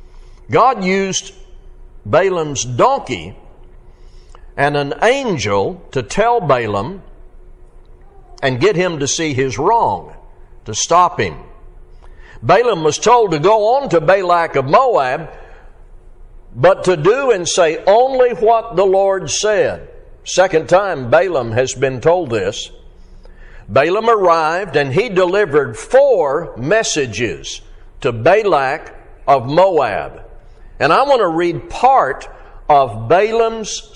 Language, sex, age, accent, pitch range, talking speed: English, male, 60-79, American, 135-215 Hz, 115 wpm